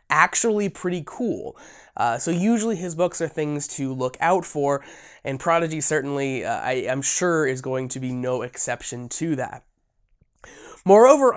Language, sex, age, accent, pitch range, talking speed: English, male, 20-39, American, 145-205 Hz, 160 wpm